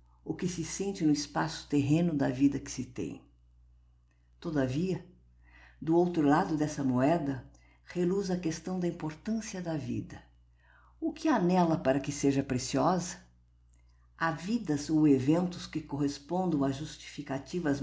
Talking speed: 140 wpm